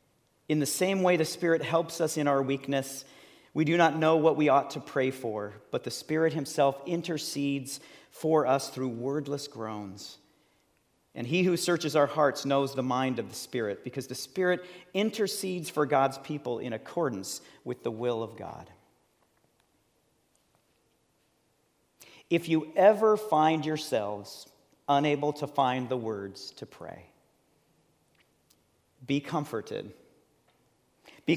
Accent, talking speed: American, 140 wpm